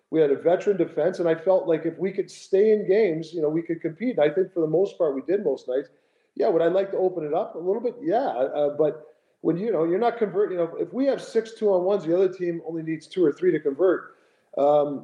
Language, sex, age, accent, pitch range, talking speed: English, male, 40-59, American, 155-235 Hz, 265 wpm